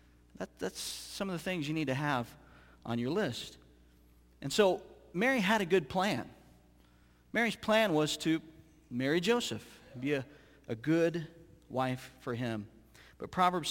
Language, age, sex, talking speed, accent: English, 40-59, male, 150 wpm, American